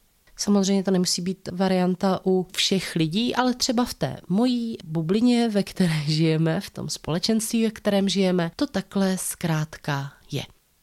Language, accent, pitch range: Czech, native, 155-190 Hz